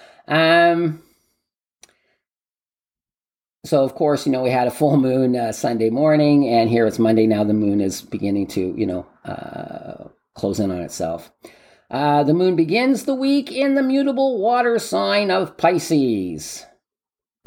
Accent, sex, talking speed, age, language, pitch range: American, male, 160 wpm, 40-59, English, 115-170 Hz